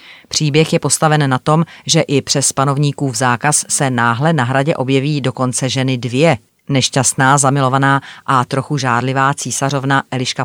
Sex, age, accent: female, 40-59, native